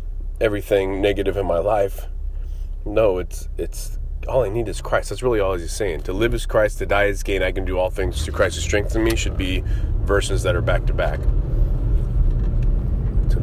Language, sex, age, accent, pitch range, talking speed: English, male, 30-49, American, 70-110 Hz, 200 wpm